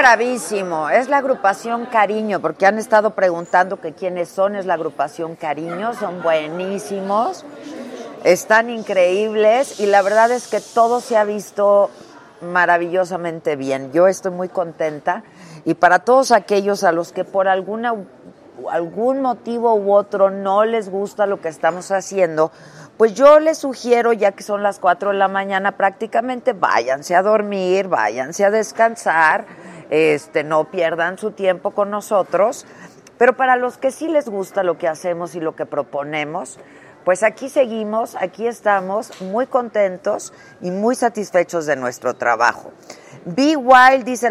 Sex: female